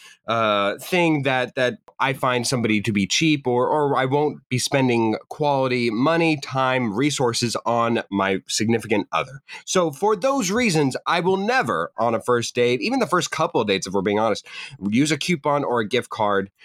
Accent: American